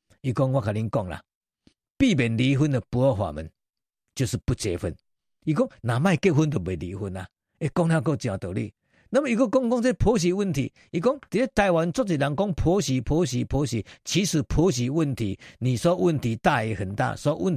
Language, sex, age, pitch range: Chinese, male, 50-69, 110-170 Hz